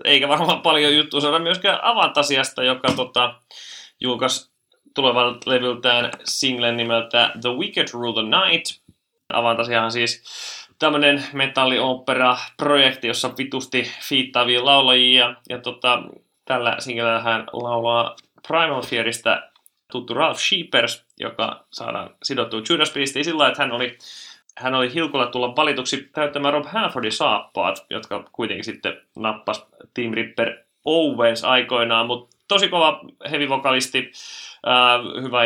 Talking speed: 125 wpm